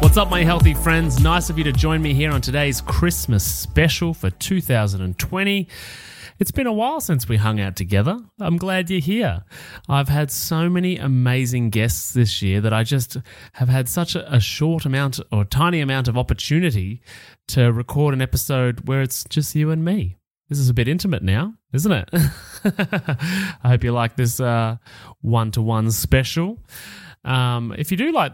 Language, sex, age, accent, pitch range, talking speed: English, male, 30-49, Australian, 115-170 Hz, 180 wpm